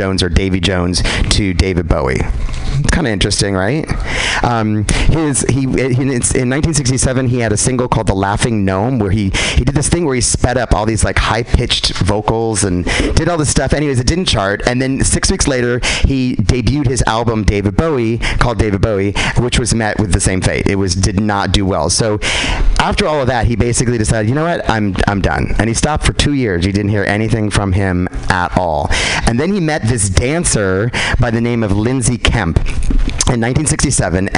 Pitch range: 95-120 Hz